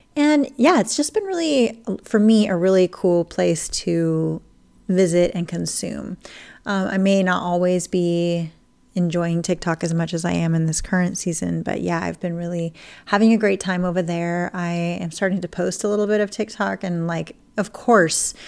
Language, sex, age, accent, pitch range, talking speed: English, female, 30-49, American, 175-215 Hz, 190 wpm